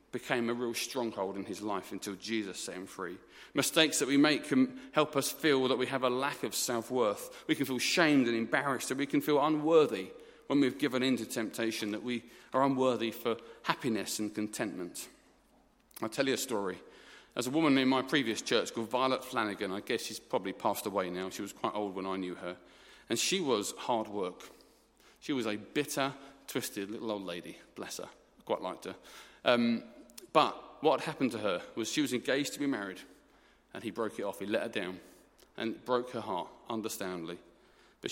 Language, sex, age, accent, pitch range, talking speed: English, male, 40-59, British, 105-130 Hz, 205 wpm